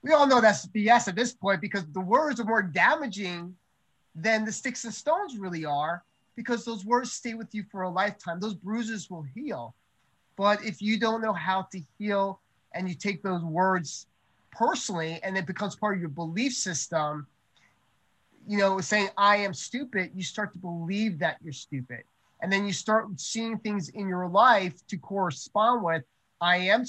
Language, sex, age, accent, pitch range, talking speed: English, male, 30-49, American, 170-215 Hz, 185 wpm